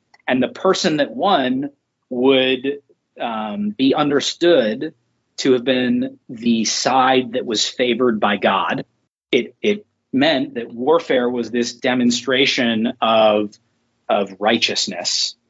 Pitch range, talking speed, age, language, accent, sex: 115-140 Hz, 115 wpm, 30-49, English, American, male